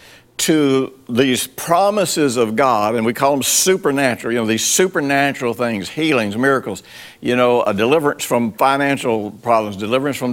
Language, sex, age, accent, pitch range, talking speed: English, male, 60-79, American, 115-145 Hz, 150 wpm